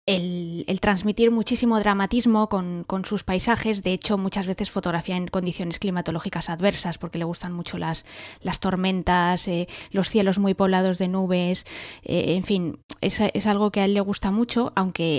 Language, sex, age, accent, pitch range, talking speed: English, female, 20-39, Spanish, 175-205 Hz, 180 wpm